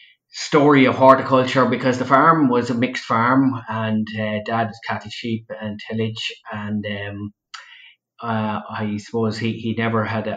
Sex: male